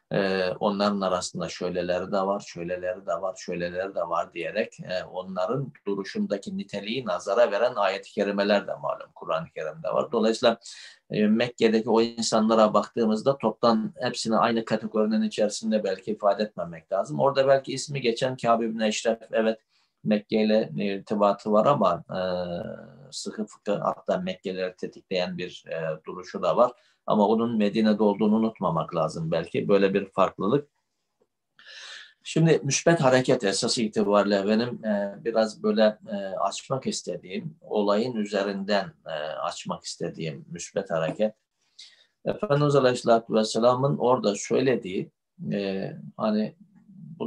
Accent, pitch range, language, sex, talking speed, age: native, 100-125 Hz, Turkish, male, 125 wpm, 50-69